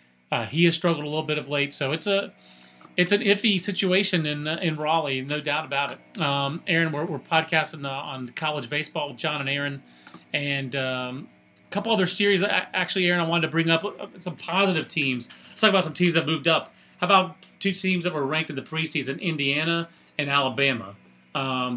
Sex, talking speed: male, 205 wpm